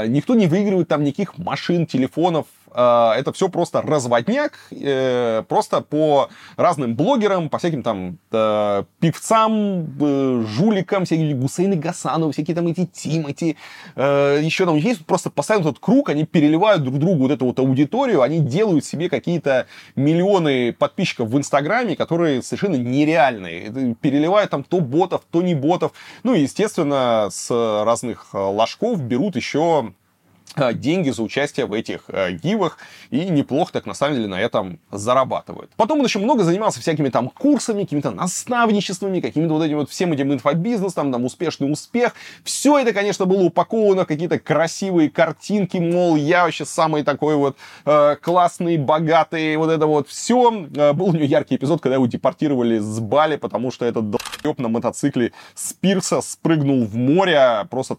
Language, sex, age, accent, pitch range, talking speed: Russian, male, 20-39, native, 135-180 Hz, 155 wpm